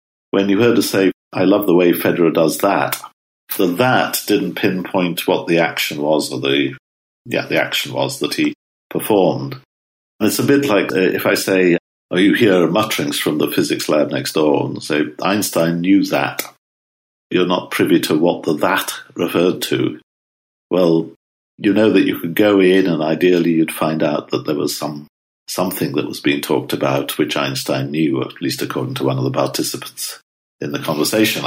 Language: English